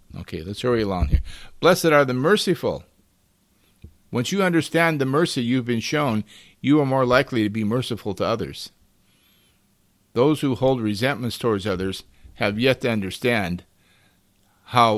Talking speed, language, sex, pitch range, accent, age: 150 wpm, English, male, 95-125 Hz, American, 50-69